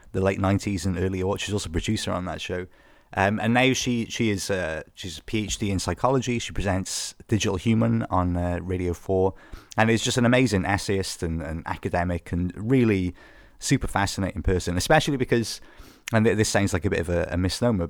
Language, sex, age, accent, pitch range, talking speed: English, male, 30-49, British, 90-105 Hz, 200 wpm